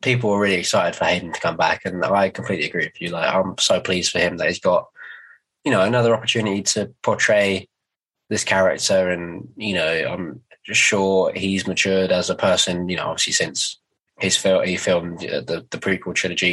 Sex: male